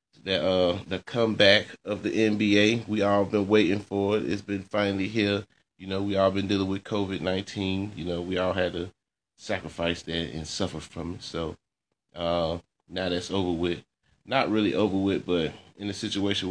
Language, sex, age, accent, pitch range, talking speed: English, male, 20-39, American, 85-100 Hz, 190 wpm